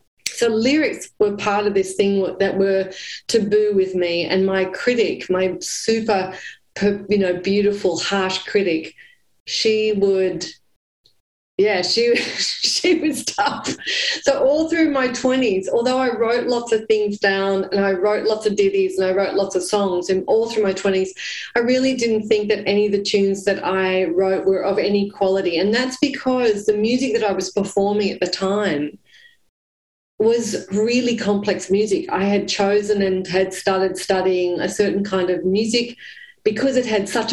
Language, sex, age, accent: English, female, 30-49, Australian